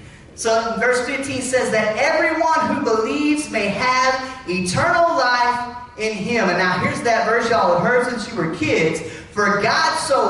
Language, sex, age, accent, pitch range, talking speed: English, male, 30-49, American, 175-265 Hz, 170 wpm